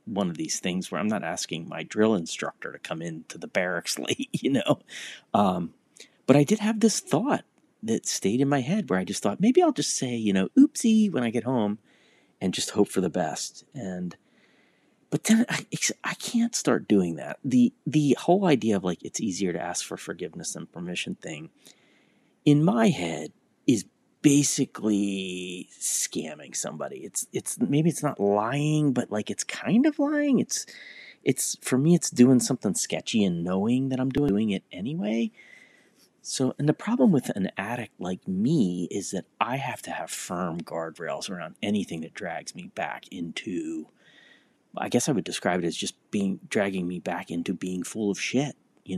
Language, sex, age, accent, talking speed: English, male, 30-49, American, 185 wpm